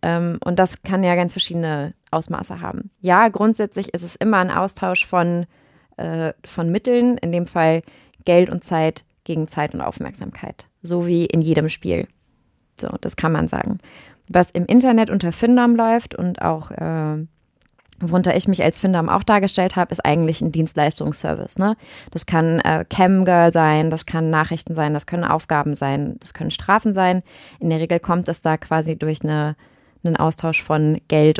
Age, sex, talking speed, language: 20-39, female, 175 wpm, German